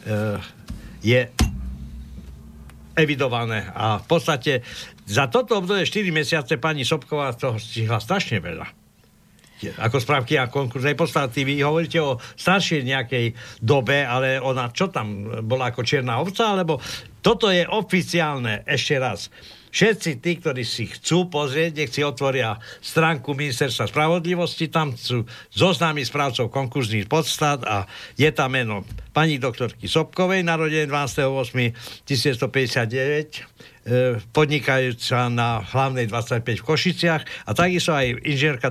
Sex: male